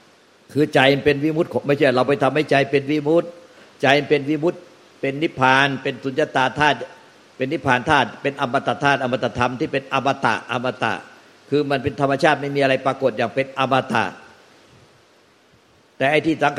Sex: male